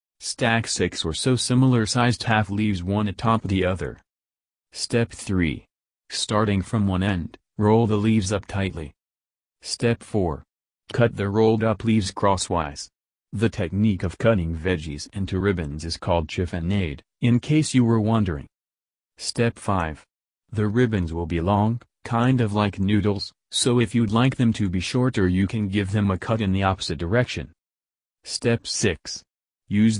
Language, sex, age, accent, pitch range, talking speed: English, male, 40-59, American, 90-110 Hz, 155 wpm